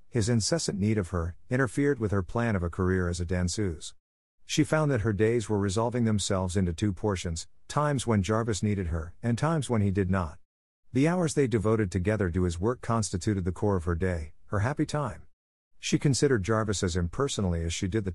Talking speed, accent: 210 wpm, American